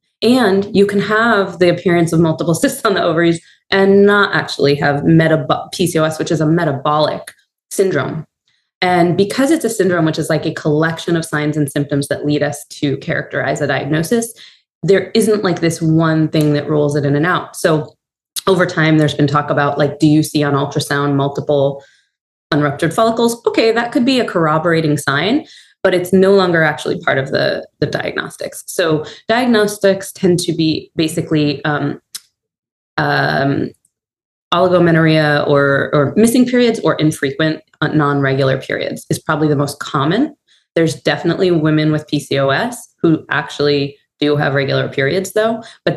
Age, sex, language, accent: 20-39, female, English, American